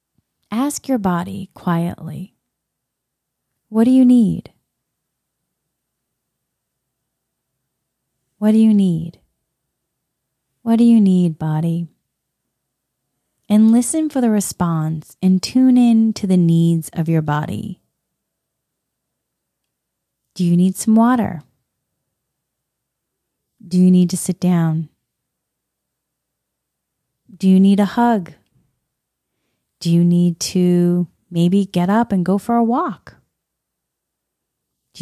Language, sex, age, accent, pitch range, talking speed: English, female, 30-49, American, 165-220 Hz, 105 wpm